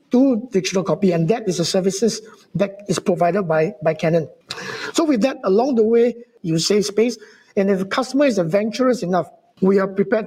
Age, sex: 60-79, male